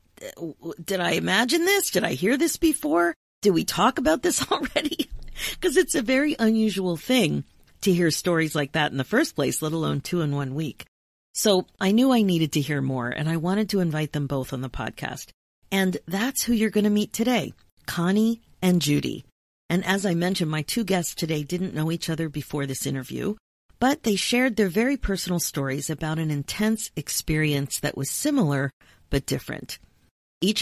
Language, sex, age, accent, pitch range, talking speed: English, female, 40-59, American, 145-205 Hz, 190 wpm